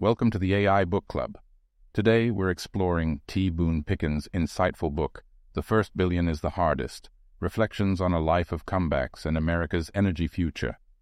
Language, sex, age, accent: English, male, 50-69, American